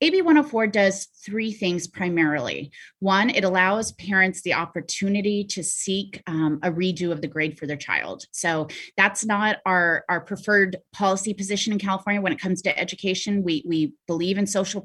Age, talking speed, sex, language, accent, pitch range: 30-49, 175 wpm, female, English, American, 165-205 Hz